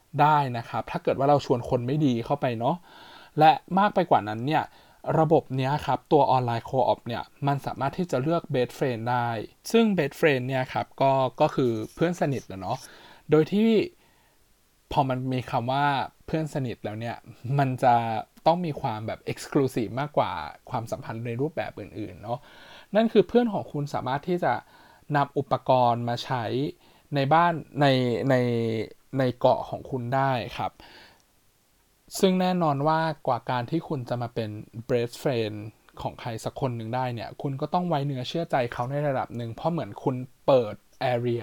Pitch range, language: 120-155 Hz, Thai